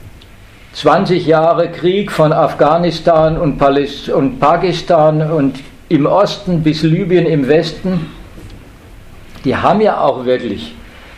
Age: 50-69